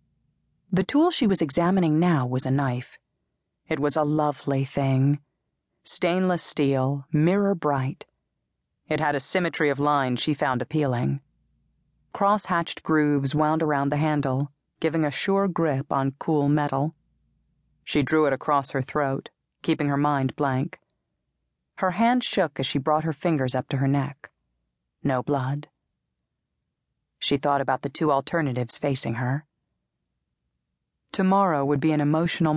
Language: English